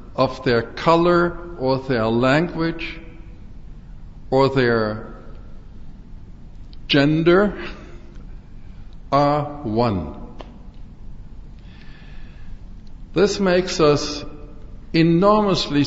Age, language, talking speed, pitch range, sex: 60-79, Arabic, 55 wpm, 105-165 Hz, male